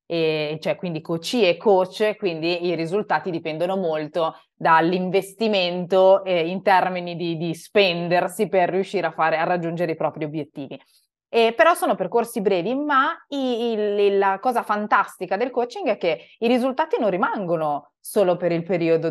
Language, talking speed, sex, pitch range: English, 150 wpm, female, 170-215 Hz